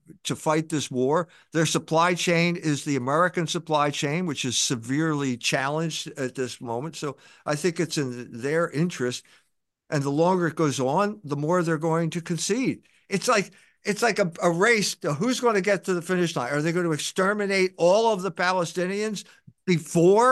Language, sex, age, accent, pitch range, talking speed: English, male, 50-69, American, 150-205 Hz, 190 wpm